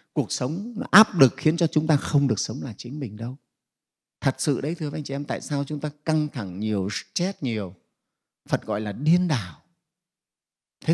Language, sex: Vietnamese, male